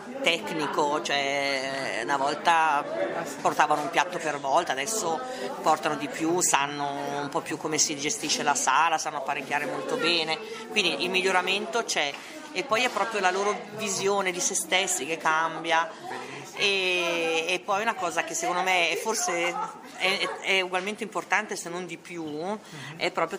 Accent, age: native, 40-59